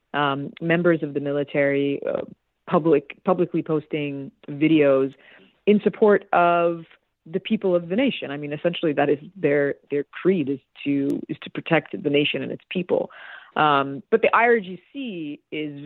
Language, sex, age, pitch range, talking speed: English, female, 30-49, 145-175 Hz, 155 wpm